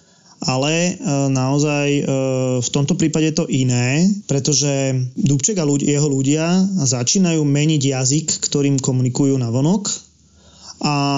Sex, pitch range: male, 140-165 Hz